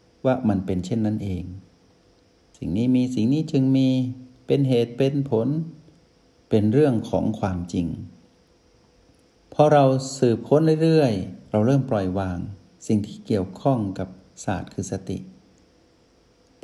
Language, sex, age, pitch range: Thai, male, 60-79, 95-125 Hz